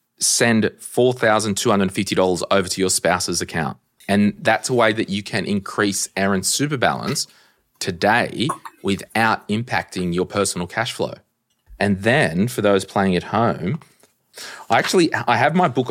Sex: male